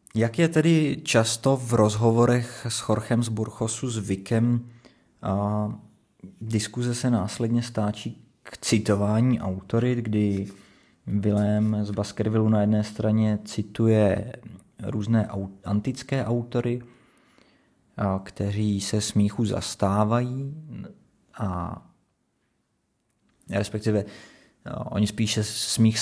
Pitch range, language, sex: 100-110 Hz, Czech, male